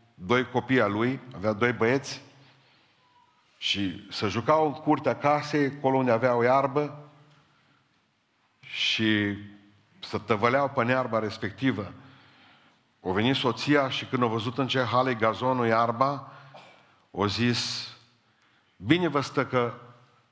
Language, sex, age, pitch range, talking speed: Romanian, male, 50-69, 110-135 Hz, 125 wpm